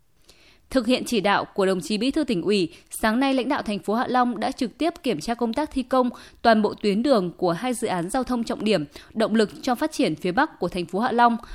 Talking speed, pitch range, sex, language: 270 wpm, 205-265 Hz, female, Vietnamese